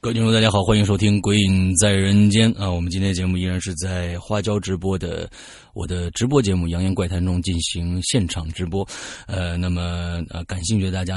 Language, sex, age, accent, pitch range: Chinese, male, 30-49, native, 90-105 Hz